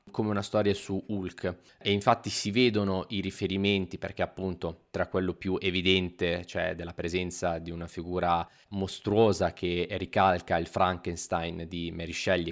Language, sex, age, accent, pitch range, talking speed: Italian, male, 20-39, native, 90-115 Hz, 150 wpm